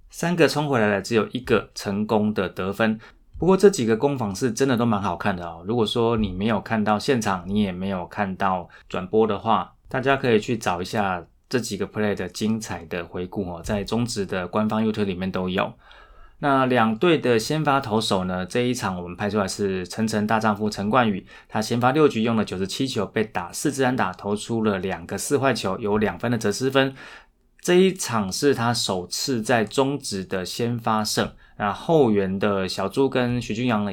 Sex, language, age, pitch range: male, Chinese, 20-39, 100-125 Hz